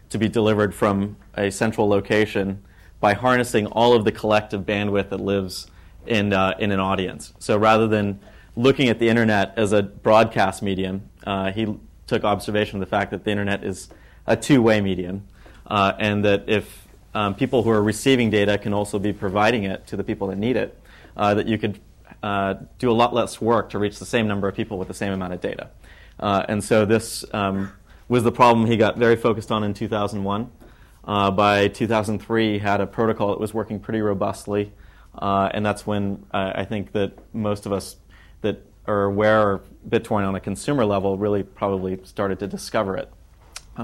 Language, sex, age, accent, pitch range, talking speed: English, male, 30-49, American, 95-110 Hz, 195 wpm